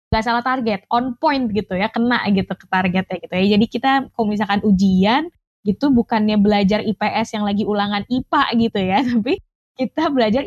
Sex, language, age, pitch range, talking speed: female, Indonesian, 20-39, 190-245 Hz, 180 wpm